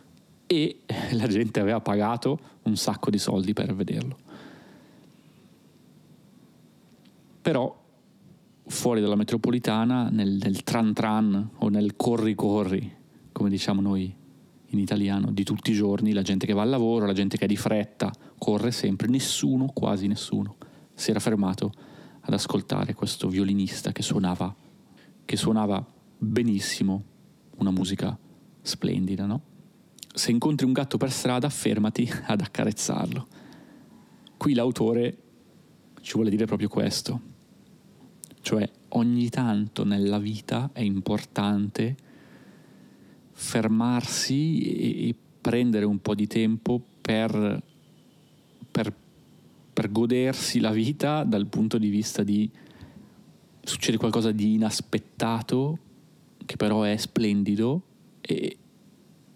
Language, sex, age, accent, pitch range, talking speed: Italian, male, 30-49, native, 105-120 Hz, 115 wpm